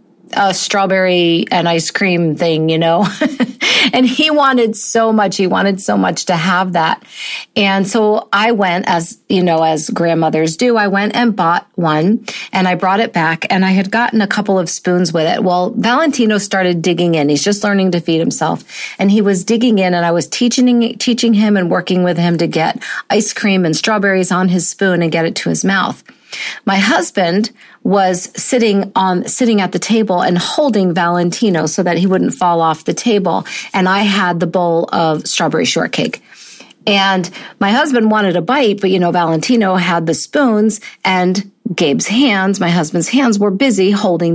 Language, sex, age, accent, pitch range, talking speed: English, female, 40-59, American, 175-220 Hz, 190 wpm